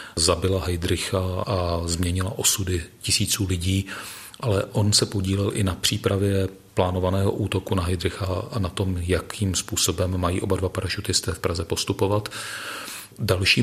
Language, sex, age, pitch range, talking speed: Czech, male, 40-59, 95-105 Hz, 135 wpm